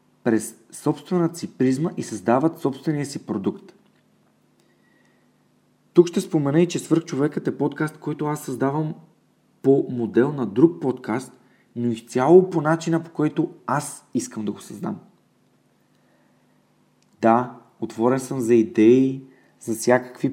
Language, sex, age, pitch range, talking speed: Bulgarian, male, 40-59, 120-145 Hz, 135 wpm